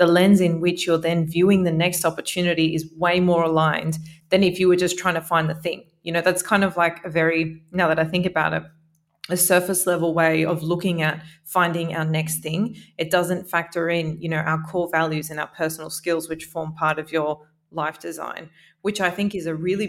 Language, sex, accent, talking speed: English, female, Australian, 225 wpm